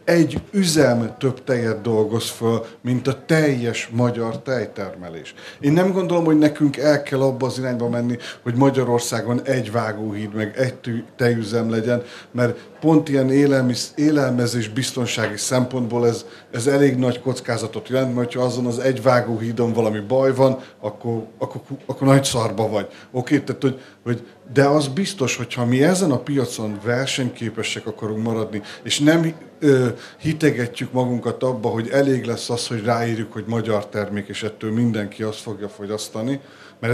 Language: Hungarian